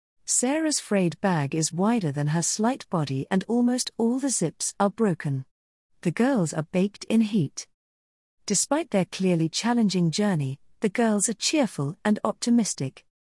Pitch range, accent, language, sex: 150-215 Hz, British, English, female